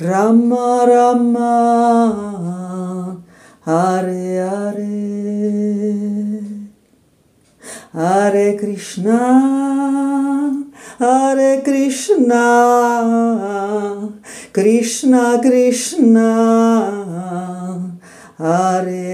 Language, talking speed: Italian, 35 wpm